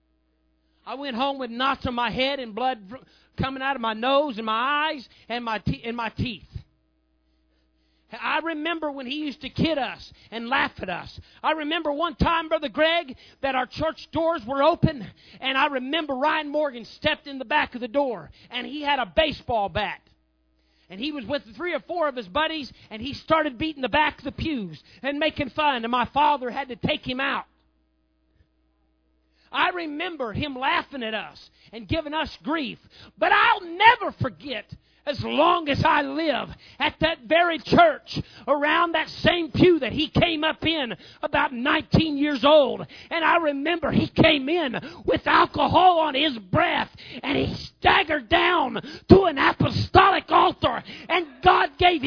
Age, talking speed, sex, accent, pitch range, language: 40-59, 175 wpm, male, American, 240-320 Hz, English